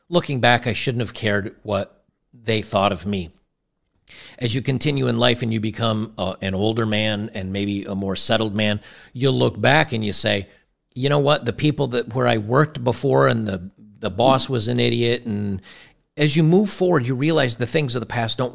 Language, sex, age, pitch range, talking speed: English, male, 50-69, 105-135 Hz, 210 wpm